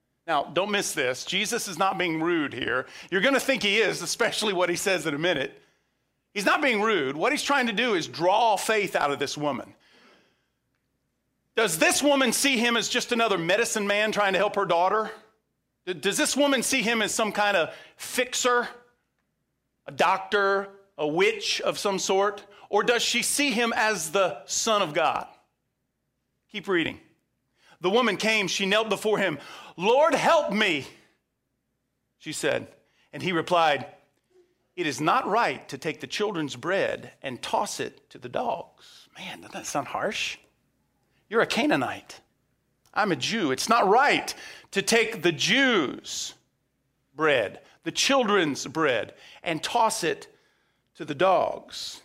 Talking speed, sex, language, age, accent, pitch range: 165 wpm, male, English, 40-59, American, 190-245 Hz